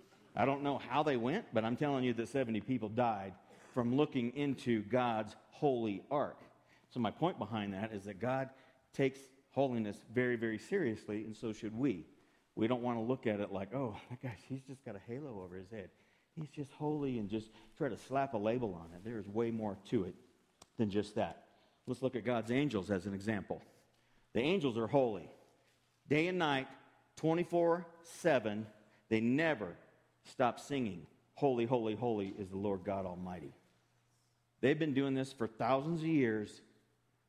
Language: English